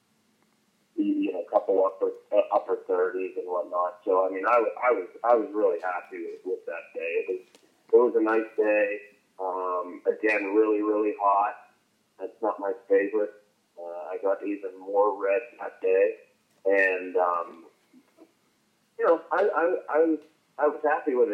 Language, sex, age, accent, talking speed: English, male, 30-49, American, 170 wpm